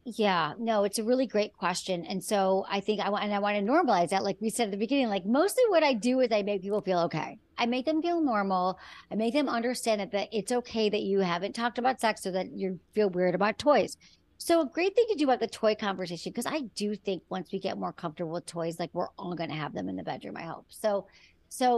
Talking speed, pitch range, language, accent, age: 265 wpm, 195-255 Hz, English, American, 40-59